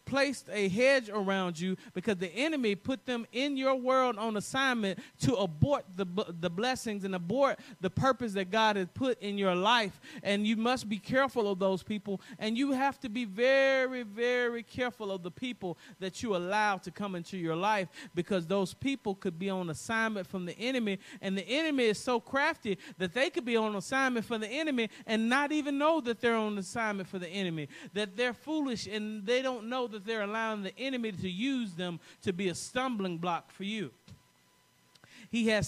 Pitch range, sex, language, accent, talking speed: 185-245 Hz, male, English, American, 200 wpm